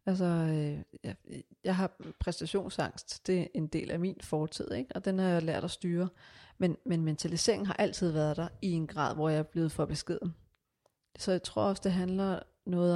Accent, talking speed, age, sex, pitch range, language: native, 205 wpm, 30-49, female, 160-185 Hz, Danish